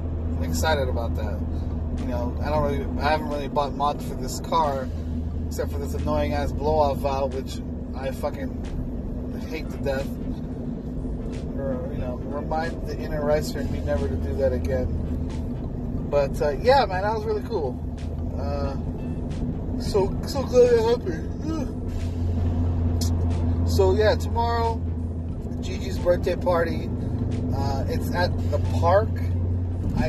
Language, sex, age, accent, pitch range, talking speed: English, male, 20-39, American, 80-85 Hz, 140 wpm